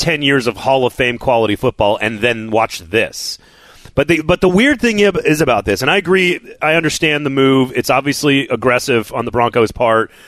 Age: 30-49